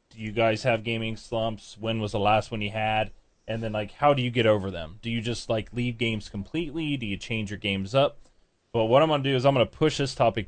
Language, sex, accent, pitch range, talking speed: English, male, American, 95-125 Hz, 270 wpm